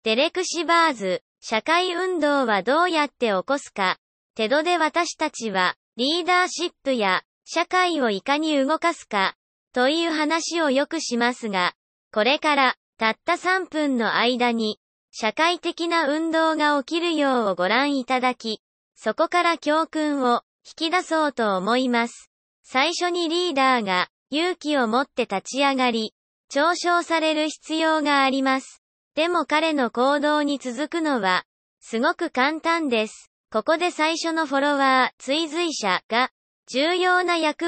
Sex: male